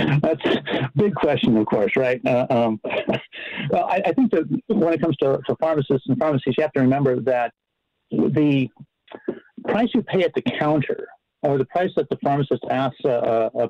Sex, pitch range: male, 120-155 Hz